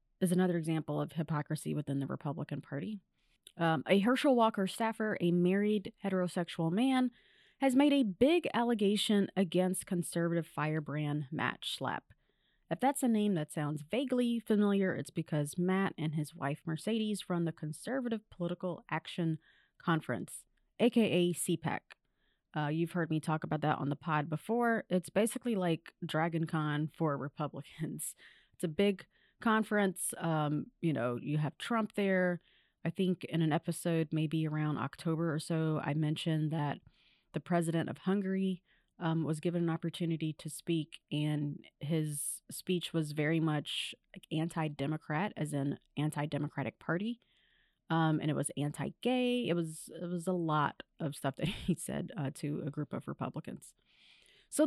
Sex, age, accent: female, 30-49, American